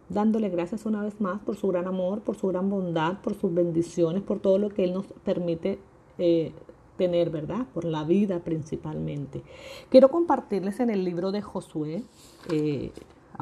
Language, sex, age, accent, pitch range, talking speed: Spanish, female, 40-59, American, 170-215 Hz, 170 wpm